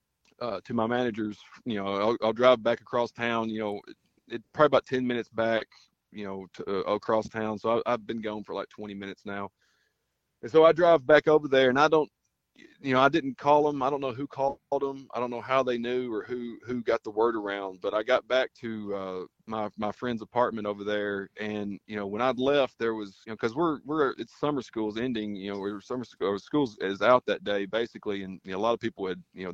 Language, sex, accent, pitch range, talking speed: English, male, American, 105-125 Hz, 240 wpm